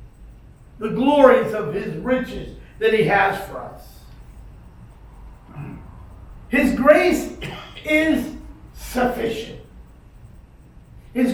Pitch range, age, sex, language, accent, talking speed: 215-275 Hz, 50-69, male, English, American, 80 wpm